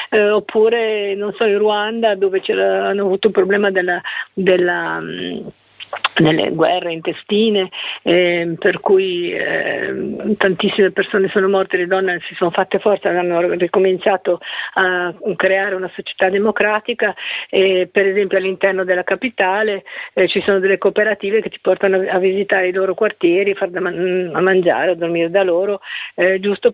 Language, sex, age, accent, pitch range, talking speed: Italian, female, 50-69, native, 185-210 Hz, 145 wpm